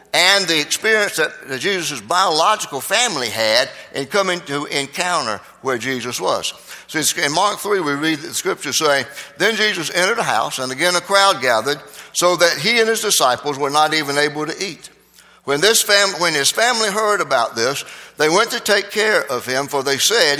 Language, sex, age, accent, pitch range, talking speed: English, male, 60-79, American, 150-205 Hz, 190 wpm